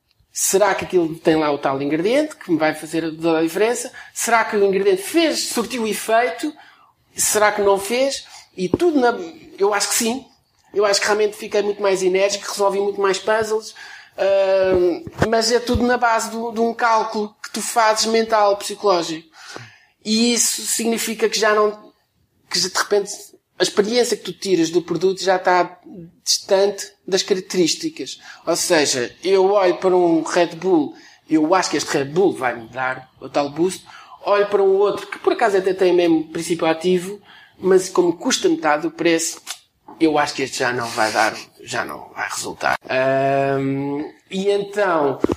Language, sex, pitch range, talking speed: Portuguese, male, 170-230 Hz, 175 wpm